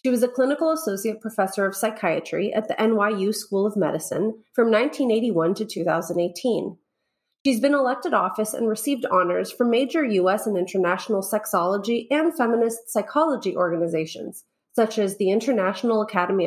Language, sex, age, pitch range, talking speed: English, female, 30-49, 195-255 Hz, 145 wpm